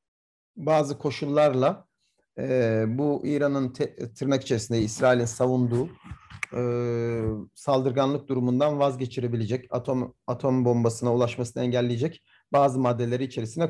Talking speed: 95 wpm